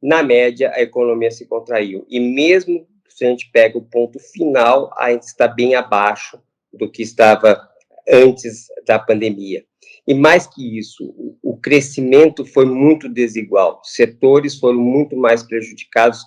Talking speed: 150 wpm